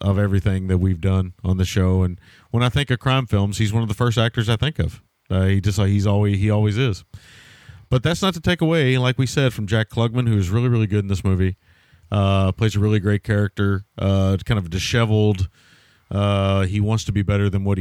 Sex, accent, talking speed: male, American, 235 wpm